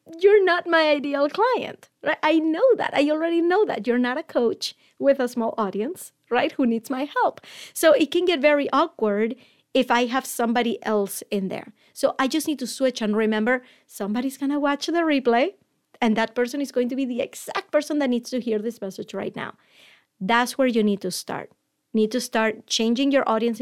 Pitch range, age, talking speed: 210-280 Hz, 30-49, 210 wpm